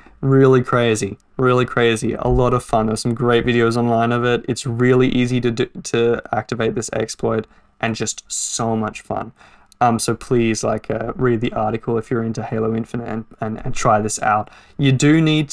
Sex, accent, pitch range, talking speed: male, Australian, 115-130 Hz, 195 wpm